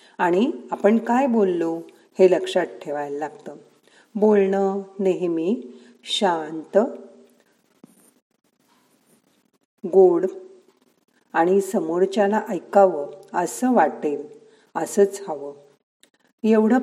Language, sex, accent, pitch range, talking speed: Marathi, female, native, 175-215 Hz, 70 wpm